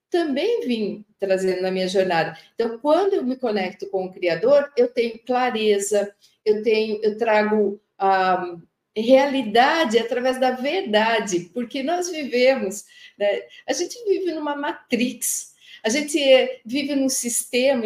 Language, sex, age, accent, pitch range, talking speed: Portuguese, female, 50-69, Brazilian, 200-265 Hz, 130 wpm